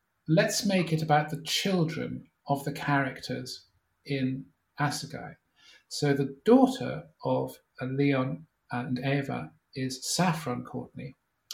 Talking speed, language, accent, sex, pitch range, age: 110 wpm, English, British, male, 130-155 Hz, 50-69